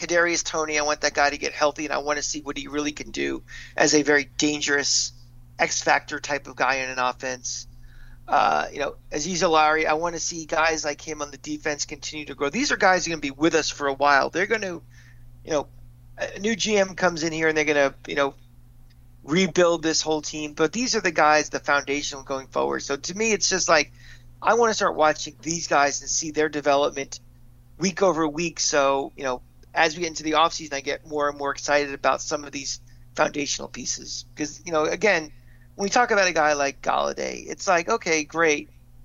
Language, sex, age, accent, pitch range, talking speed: English, male, 40-59, American, 130-155 Hz, 230 wpm